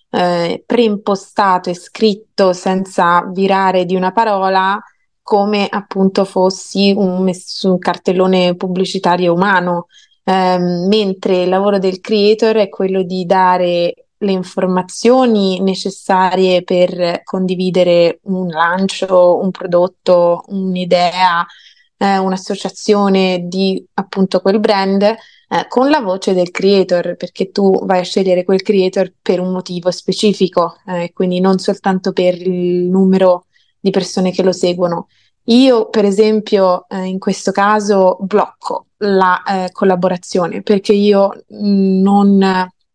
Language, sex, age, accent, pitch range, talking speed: Italian, female, 20-39, native, 185-200 Hz, 115 wpm